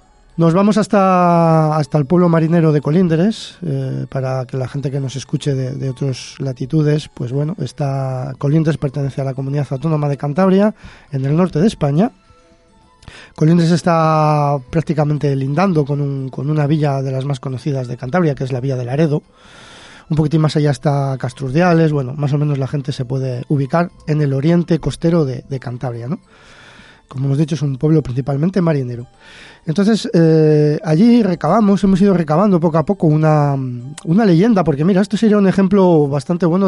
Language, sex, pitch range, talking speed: Spanish, male, 140-175 Hz, 180 wpm